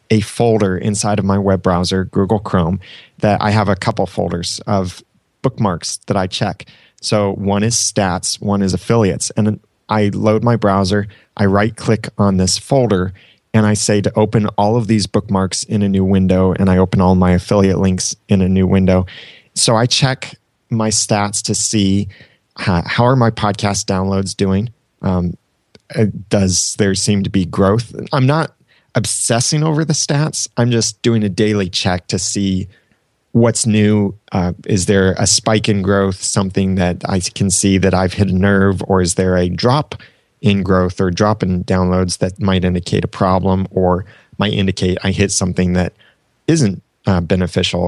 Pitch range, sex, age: 95-110 Hz, male, 30-49